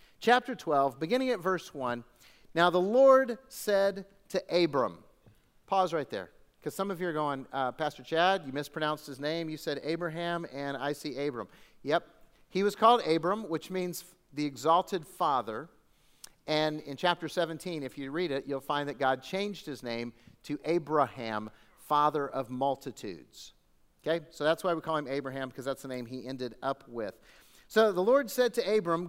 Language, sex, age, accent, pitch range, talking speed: English, male, 50-69, American, 145-200 Hz, 180 wpm